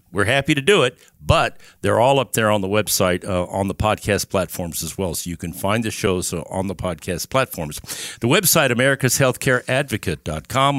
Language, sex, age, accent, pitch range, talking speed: English, male, 60-79, American, 100-130 Hz, 190 wpm